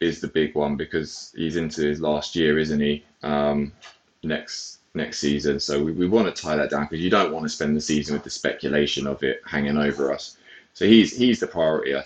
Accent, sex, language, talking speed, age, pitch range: British, male, English, 230 wpm, 20-39, 75-105 Hz